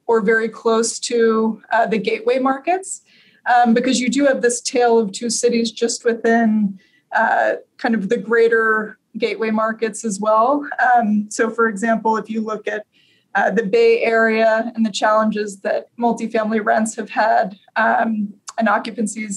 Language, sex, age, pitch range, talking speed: English, female, 20-39, 220-240 Hz, 160 wpm